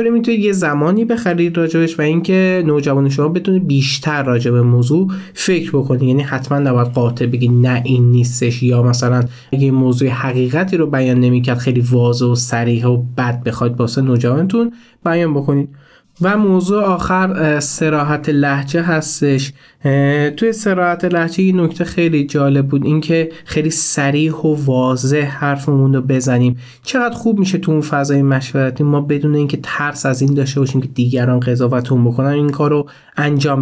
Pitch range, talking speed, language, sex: 130-160 Hz, 155 wpm, Persian, male